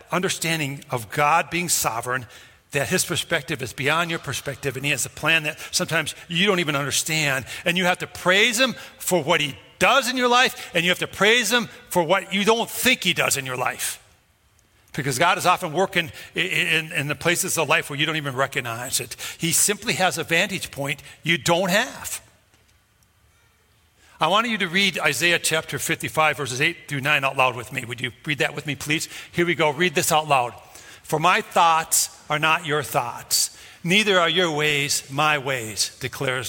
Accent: American